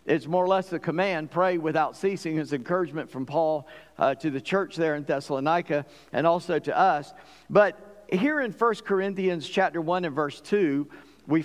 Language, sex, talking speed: English, male, 185 wpm